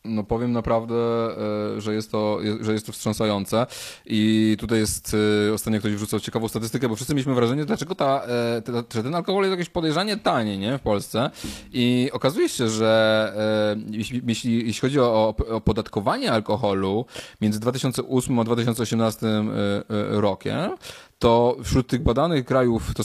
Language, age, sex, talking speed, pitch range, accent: Polish, 20-39, male, 145 wpm, 105-120 Hz, native